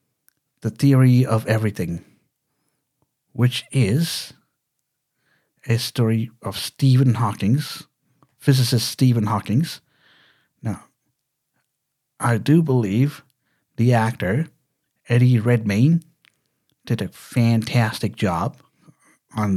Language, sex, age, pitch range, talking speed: English, male, 50-69, 110-140 Hz, 85 wpm